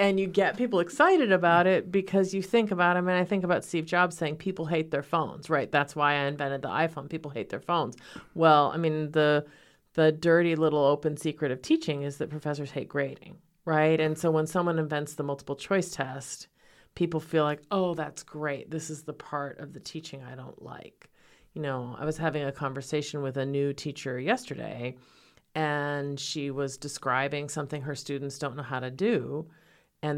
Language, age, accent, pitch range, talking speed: English, 40-59, American, 140-165 Hz, 205 wpm